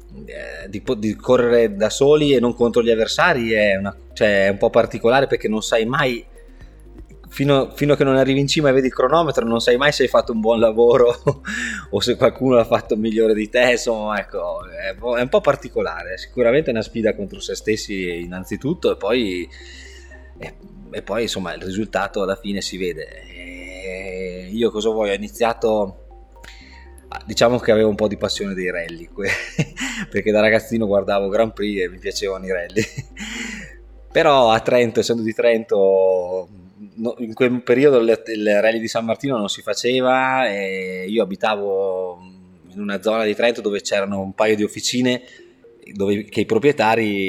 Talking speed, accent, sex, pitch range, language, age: 170 wpm, native, male, 100-120 Hz, Italian, 20-39